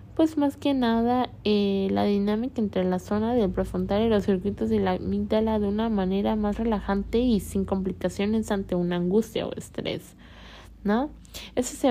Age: 20-39